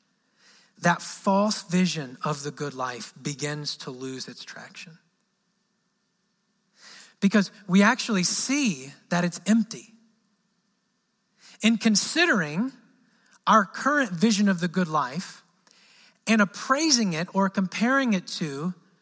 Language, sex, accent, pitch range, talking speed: English, male, American, 175-220 Hz, 110 wpm